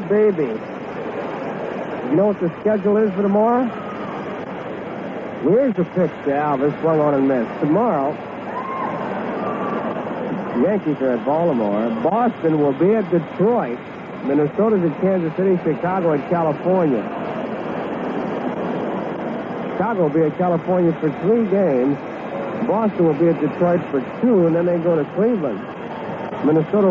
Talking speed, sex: 125 wpm, male